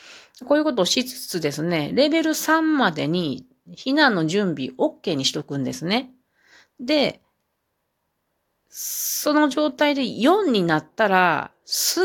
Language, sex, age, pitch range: Japanese, female, 40-59, 145-205 Hz